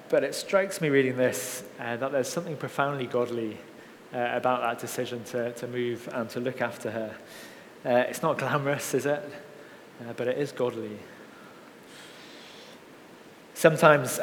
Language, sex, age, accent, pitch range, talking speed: English, male, 20-39, British, 120-140 Hz, 150 wpm